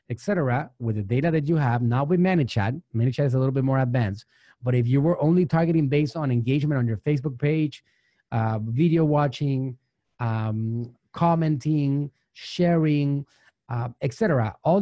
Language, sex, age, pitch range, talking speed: English, male, 30-49, 120-165 Hz, 160 wpm